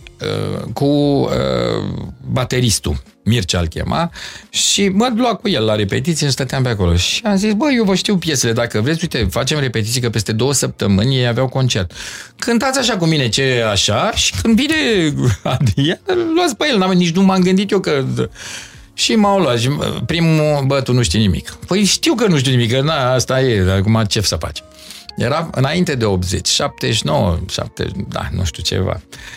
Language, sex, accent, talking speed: Romanian, male, native, 180 wpm